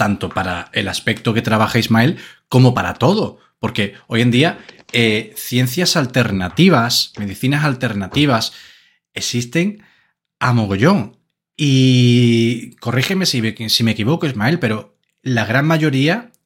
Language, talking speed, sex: Spanish, 120 wpm, male